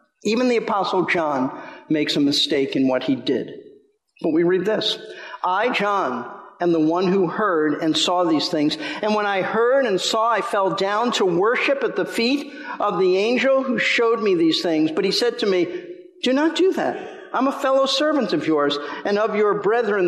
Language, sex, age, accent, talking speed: English, male, 50-69, American, 200 wpm